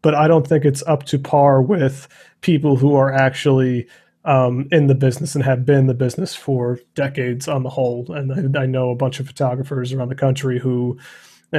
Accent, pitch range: American, 130-150 Hz